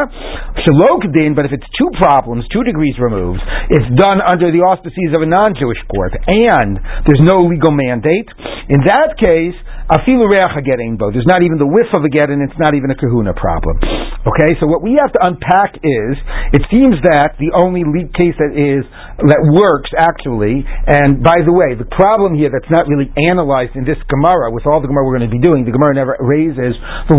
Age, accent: 40-59, American